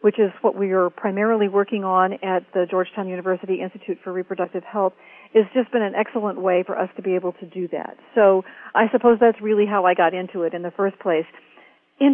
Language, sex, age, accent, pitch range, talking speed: English, female, 50-69, American, 185-215 Hz, 225 wpm